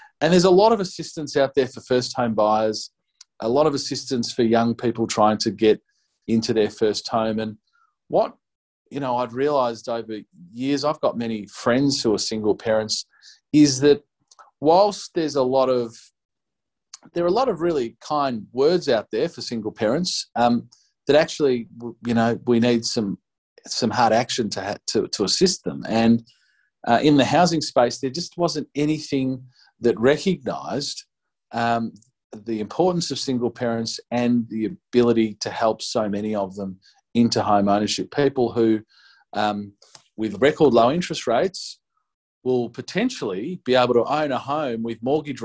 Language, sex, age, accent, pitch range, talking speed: English, male, 40-59, Australian, 115-140 Hz, 165 wpm